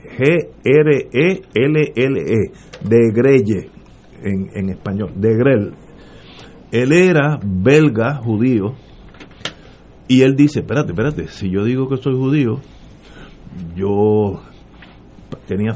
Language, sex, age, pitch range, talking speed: Spanish, male, 50-69, 100-135 Hz, 95 wpm